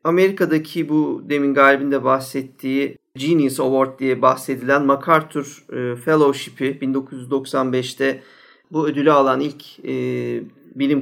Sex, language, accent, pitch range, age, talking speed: male, Turkish, native, 140-180 Hz, 40-59, 100 wpm